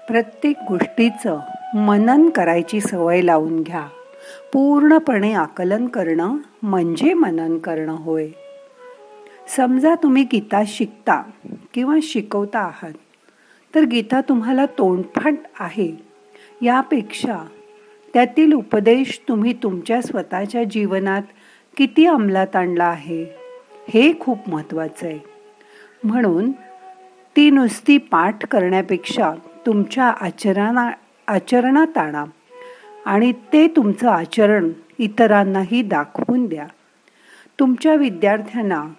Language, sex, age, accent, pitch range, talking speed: Marathi, female, 50-69, native, 185-275 Hz, 90 wpm